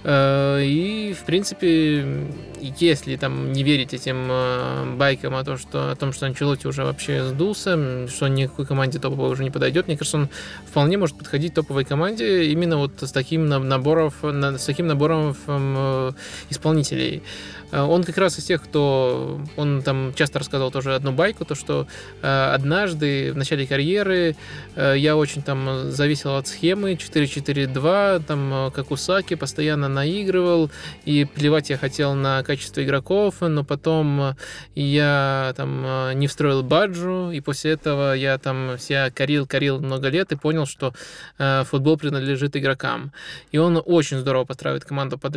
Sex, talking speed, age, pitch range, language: male, 145 wpm, 20-39, 135-155 Hz, Russian